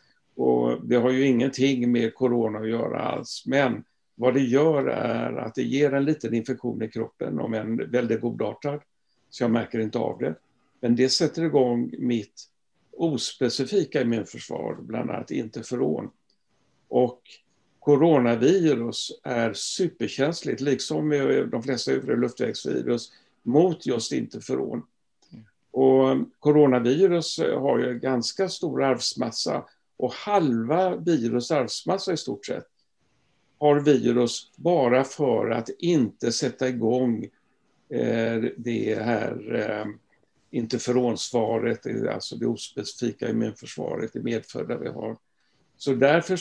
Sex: male